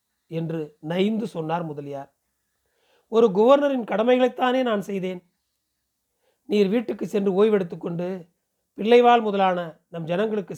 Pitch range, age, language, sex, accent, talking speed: 170-220 Hz, 40-59, Tamil, male, native, 95 wpm